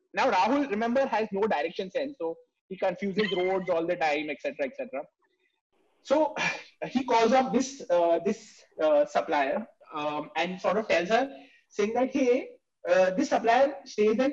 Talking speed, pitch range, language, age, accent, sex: 170 wpm, 215-295 Hz, English, 30-49, Indian, male